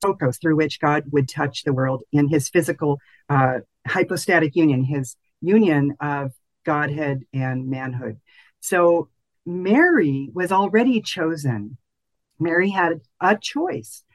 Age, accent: 50-69, American